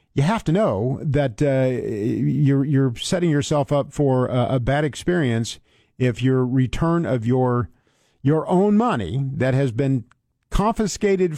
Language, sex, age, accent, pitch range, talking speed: English, male, 50-69, American, 120-155 Hz, 150 wpm